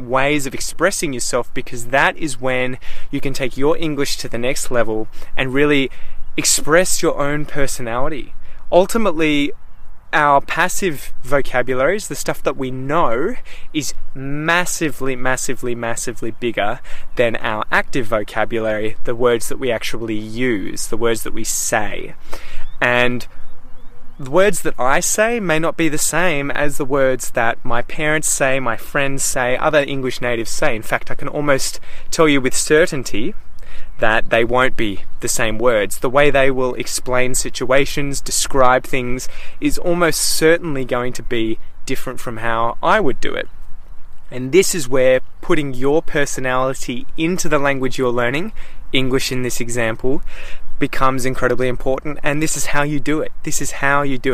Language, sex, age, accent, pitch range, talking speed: English, male, 20-39, Australian, 125-150 Hz, 160 wpm